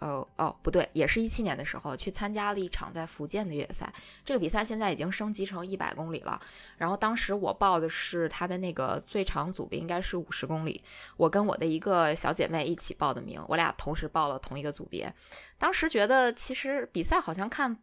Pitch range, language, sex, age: 165-215 Hz, Chinese, female, 20-39